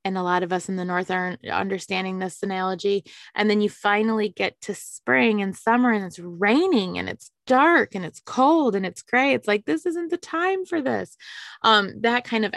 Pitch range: 195-245 Hz